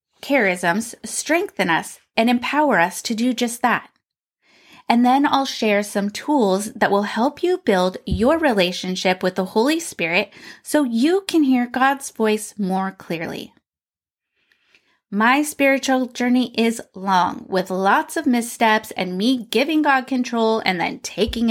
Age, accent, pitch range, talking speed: 20-39, American, 210-280 Hz, 145 wpm